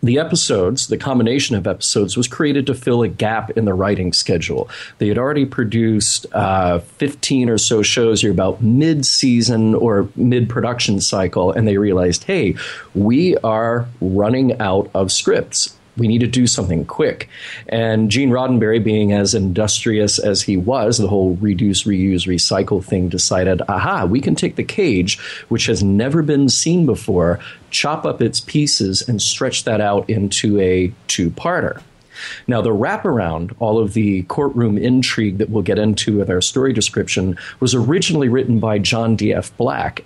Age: 40-59